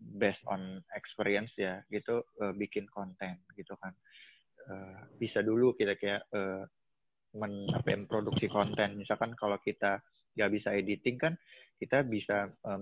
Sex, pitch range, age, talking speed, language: male, 95-110 Hz, 20-39, 130 wpm, Indonesian